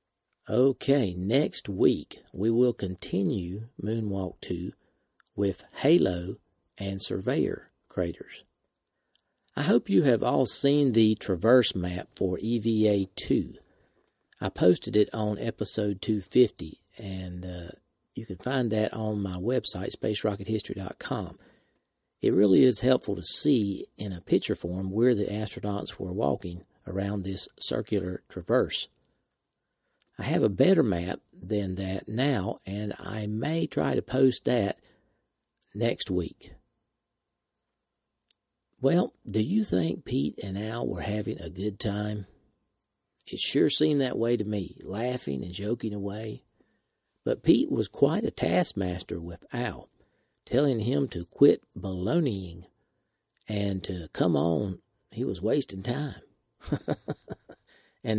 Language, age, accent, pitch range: English, 50-69, American, 95-115 Hz